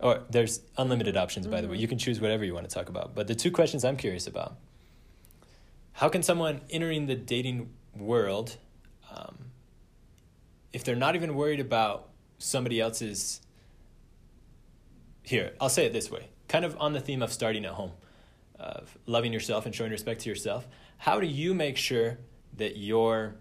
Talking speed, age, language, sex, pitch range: 175 wpm, 20-39, English, male, 105-125 Hz